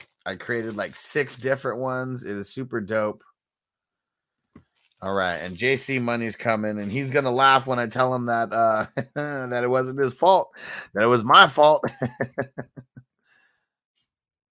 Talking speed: 155 wpm